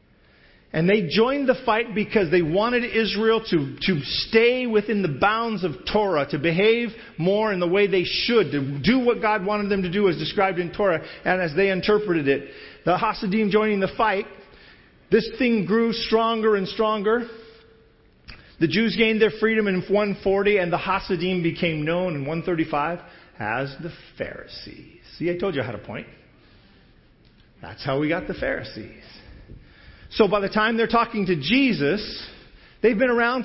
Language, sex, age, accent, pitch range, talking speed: English, male, 40-59, American, 170-220 Hz, 170 wpm